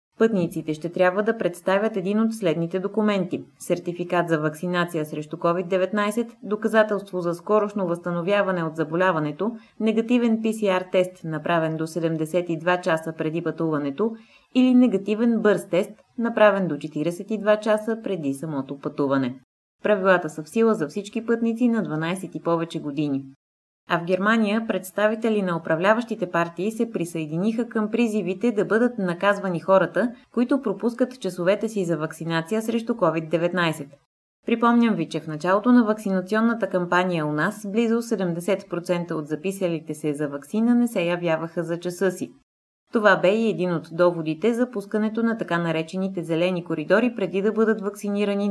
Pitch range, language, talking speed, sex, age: 165-215 Hz, Bulgarian, 145 wpm, female, 20-39